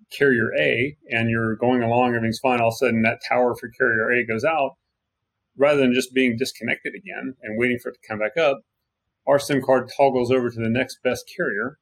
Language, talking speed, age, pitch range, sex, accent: English, 220 wpm, 30-49, 110-130 Hz, male, American